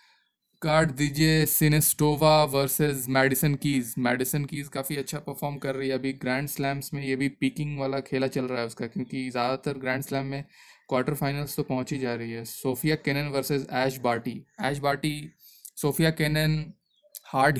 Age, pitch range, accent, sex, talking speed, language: 20-39, 130-150 Hz, native, male, 170 wpm, Hindi